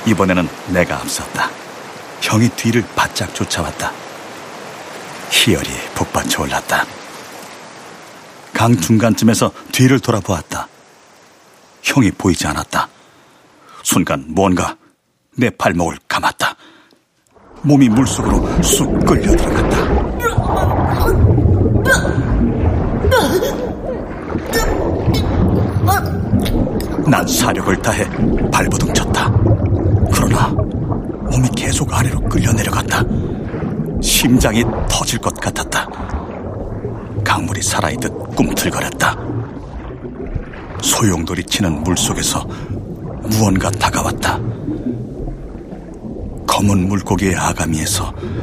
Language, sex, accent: Korean, male, native